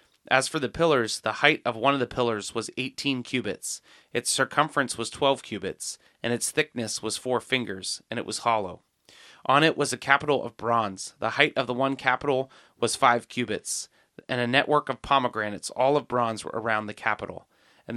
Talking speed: 195 wpm